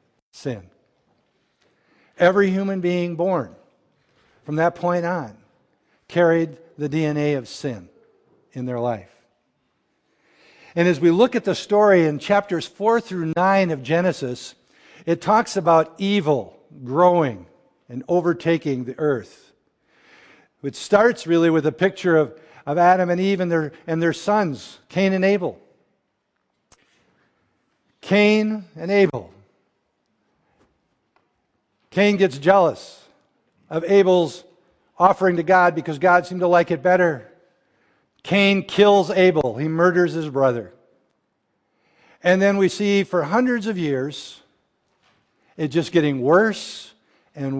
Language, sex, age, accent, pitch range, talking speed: English, male, 50-69, American, 150-185 Hz, 120 wpm